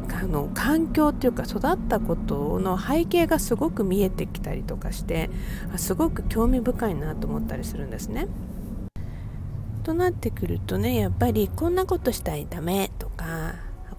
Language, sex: Japanese, female